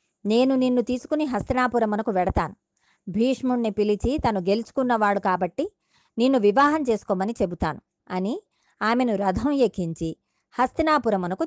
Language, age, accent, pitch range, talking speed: Telugu, 20-39, native, 185-245 Hz, 100 wpm